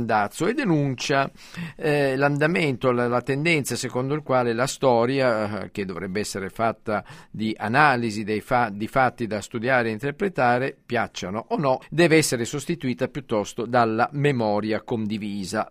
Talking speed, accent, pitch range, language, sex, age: 140 wpm, native, 110-150 Hz, Italian, male, 50-69